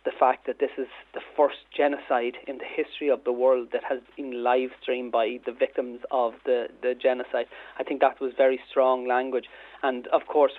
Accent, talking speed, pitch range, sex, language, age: Irish, 200 wpm, 130-160 Hz, male, English, 30-49